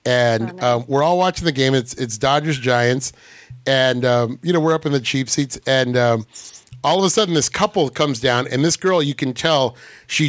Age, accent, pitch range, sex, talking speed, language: 30-49, American, 120-150 Hz, male, 220 wpm, English